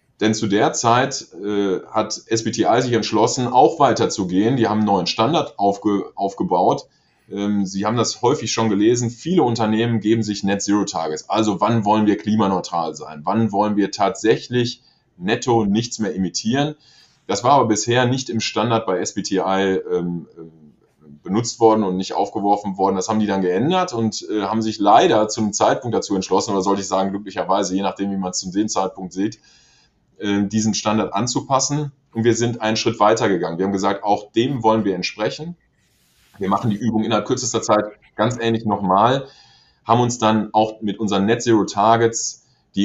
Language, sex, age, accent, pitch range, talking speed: German, male, 20-39, German, 95-115 Hz, 175 wpm